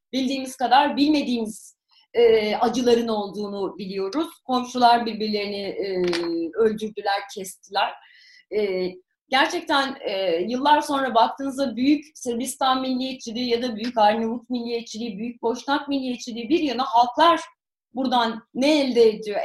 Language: Turkish